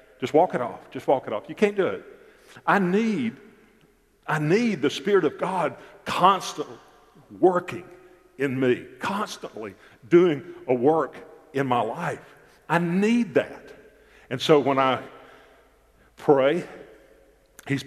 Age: 50-69